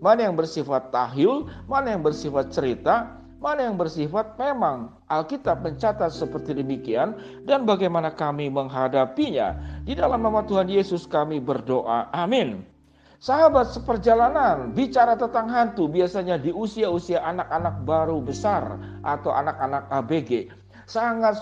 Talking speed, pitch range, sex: 120 wpm, 150-220 Hz, male